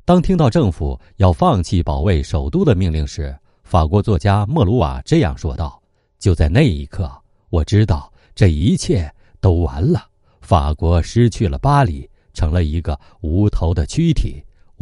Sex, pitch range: male, 80-115 Hz